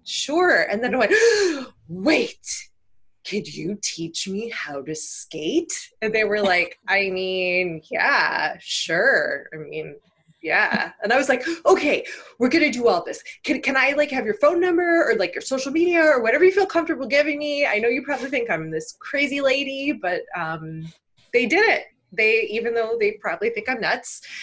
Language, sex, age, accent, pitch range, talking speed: English, female, 20-39, American, 160-260 Hz, 190 wpm